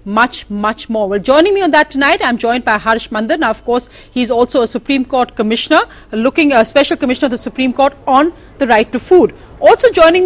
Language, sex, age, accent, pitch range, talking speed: English, female, 40-59, Indian, 235-305 Hz, 220 wpm